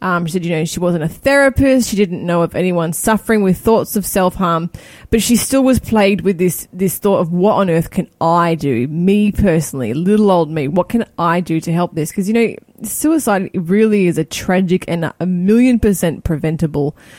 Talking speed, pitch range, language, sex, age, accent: 215 wpm, 175-225 Hz, English, female, 20-39, Australian